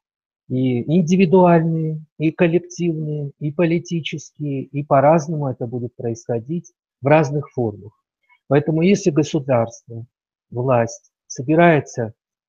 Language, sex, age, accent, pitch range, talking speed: Russian, male, 50-69, native, 120-155 Hz, 90 wpm